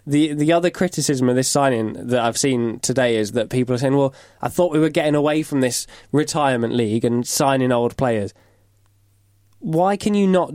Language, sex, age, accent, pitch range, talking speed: English, male, 10-29, British, 115-155 Hz, 200 wpm